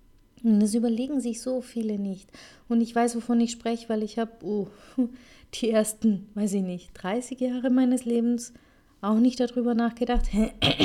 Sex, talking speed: female, 165 wpm